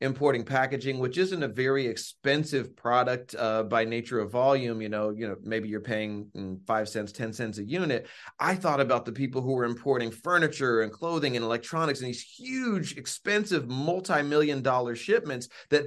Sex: male